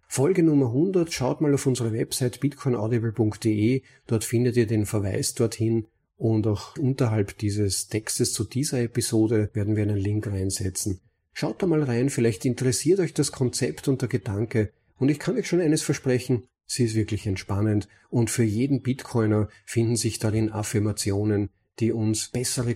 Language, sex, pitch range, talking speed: German, male, 100-125 Hz, 165 wpm